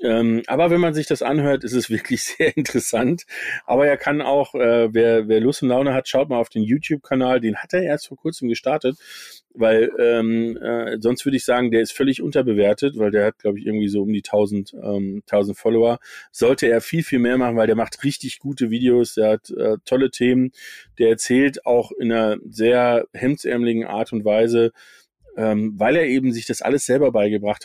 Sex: male